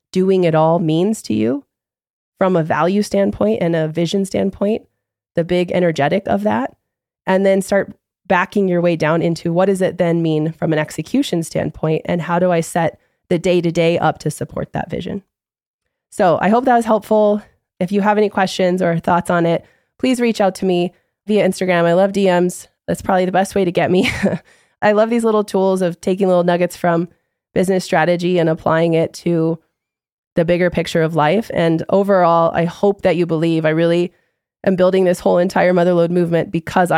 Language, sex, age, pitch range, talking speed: English, female, 20-39, 165-190 Hz, 195 wpm